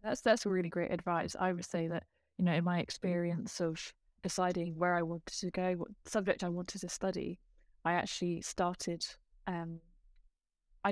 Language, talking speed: English, 175 wpm